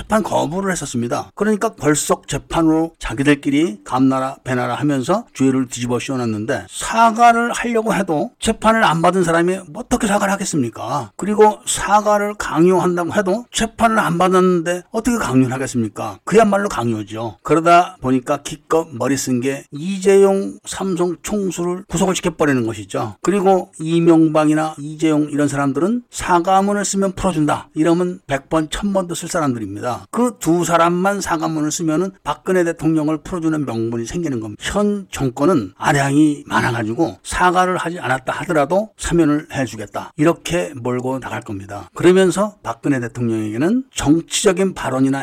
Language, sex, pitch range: Korean, male, 135-190 Hz